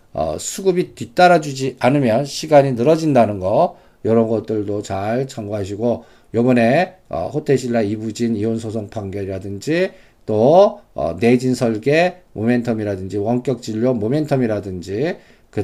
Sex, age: male, 50-69